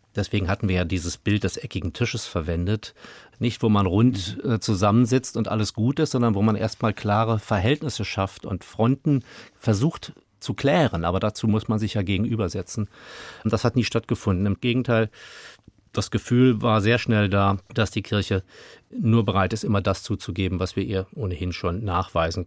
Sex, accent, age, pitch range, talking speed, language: male, German, 40-59, 95-115 Hz, 180 wpm, German